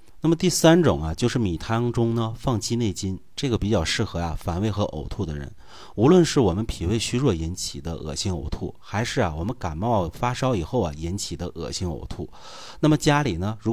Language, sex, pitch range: Chinese, male, 90-125 Hz